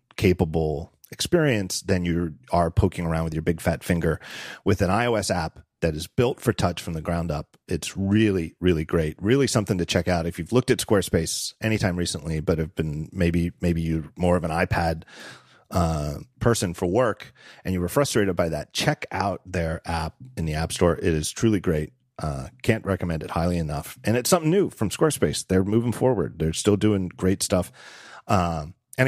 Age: 40-59